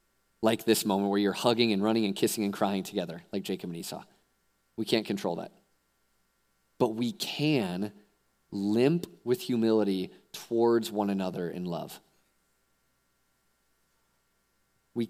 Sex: male